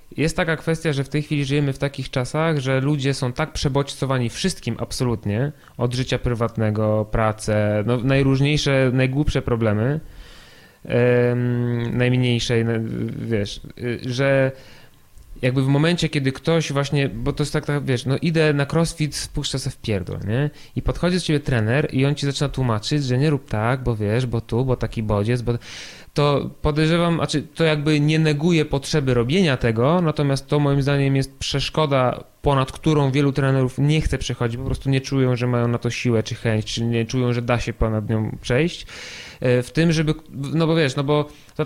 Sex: male